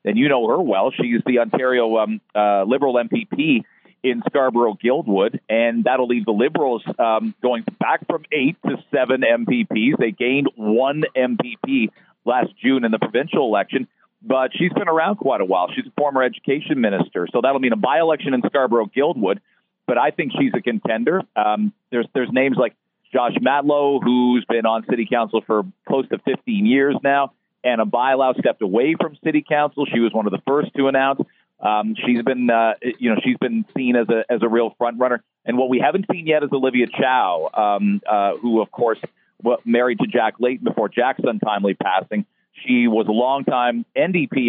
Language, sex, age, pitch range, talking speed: English, male, 40-59, 110-140 Hz, 190 wpm